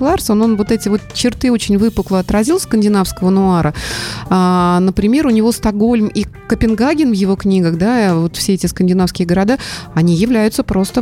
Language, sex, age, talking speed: Russian, female, 30-49, 165 wpm